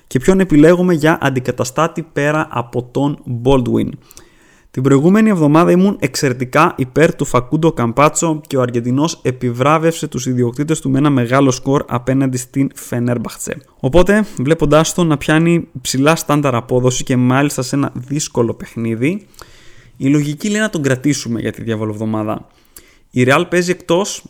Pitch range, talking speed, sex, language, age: 125-165 Hz, 150 wpm, male, Greek, 20-39